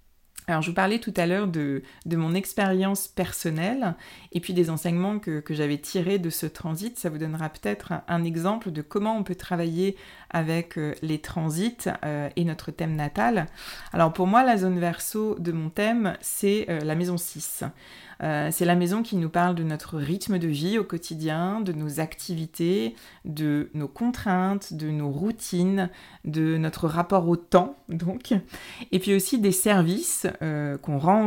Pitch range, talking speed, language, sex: 160-195 Hz, 175 wpm, French, female